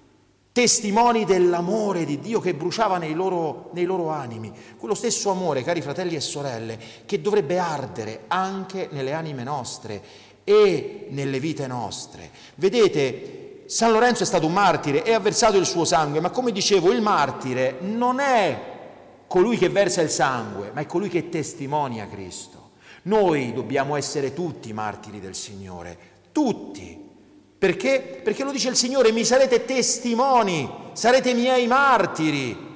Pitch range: 150-240 Hz